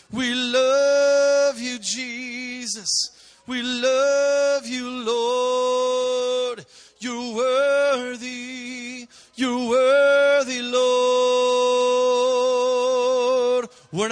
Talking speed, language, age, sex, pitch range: 60 wpm, English, 30-49, male, 240-275 Hz